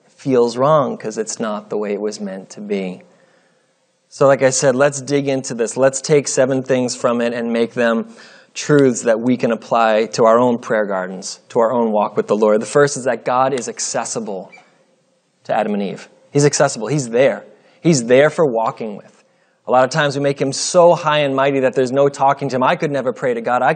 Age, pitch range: 30-49, 115-140 Hz